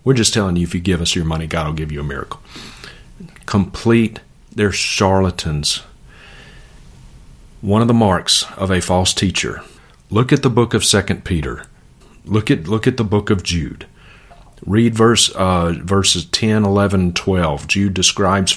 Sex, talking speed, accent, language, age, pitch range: male, 170 wpm, American, English, 40-59, 85-100 Hz